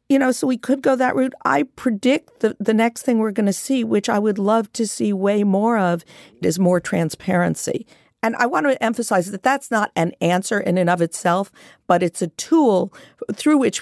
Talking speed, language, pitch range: 215 wpm, English, 180-245 Hz